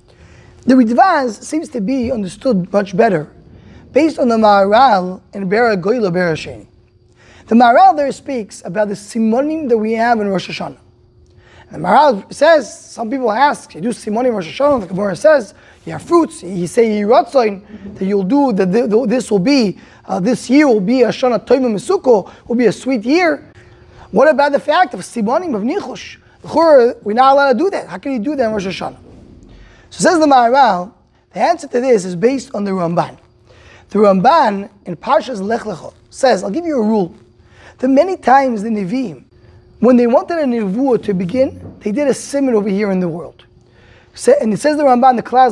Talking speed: 195 wpm